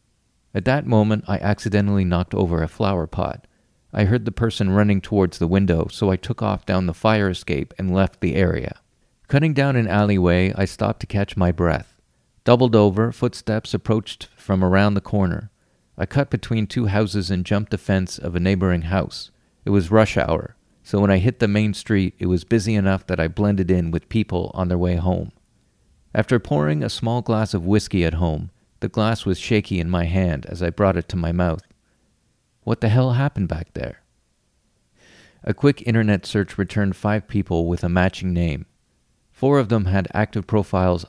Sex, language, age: male, English, 40-59